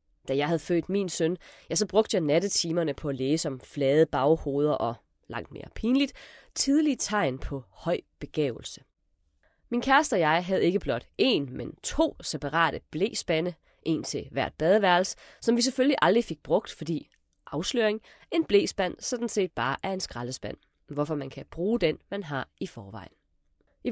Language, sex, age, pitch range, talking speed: Danish, female, 30-49, 140-195 Hz, 170 wpm